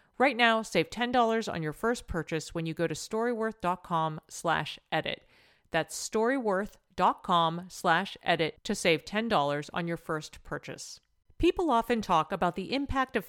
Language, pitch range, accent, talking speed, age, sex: English, 165-230 Hz, American, 140 wpm, 40-59, female